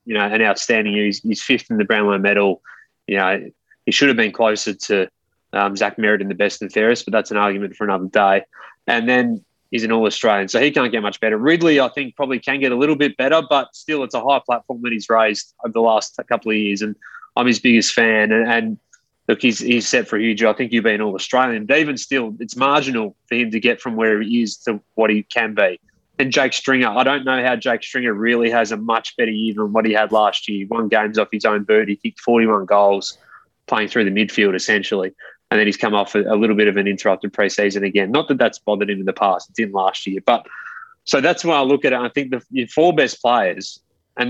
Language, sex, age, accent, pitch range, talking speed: English, male, 20-39, Australian, 105-125 Hz, 255 wpm